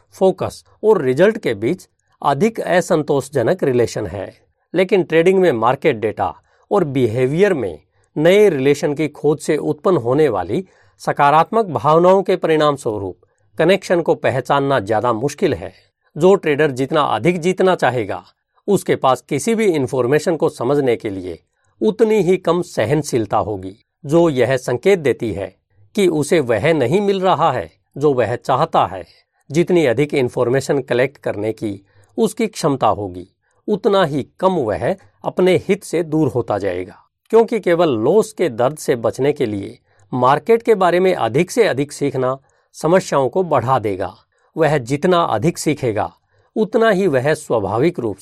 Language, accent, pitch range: Hindi, native, 125-185 Hz